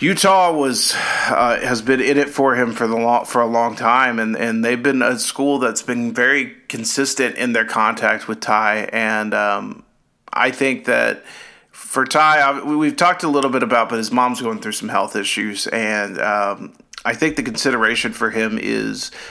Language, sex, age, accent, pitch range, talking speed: English, male, 40-59, American, 110-130 Hz, 185 wpm